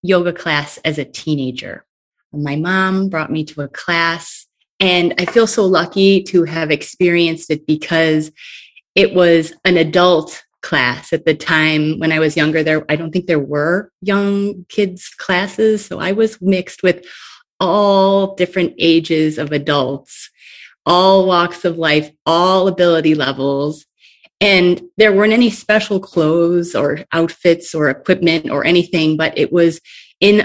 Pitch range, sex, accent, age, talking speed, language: 155-190 Hz, female, American, 30-49, 150 wpm, English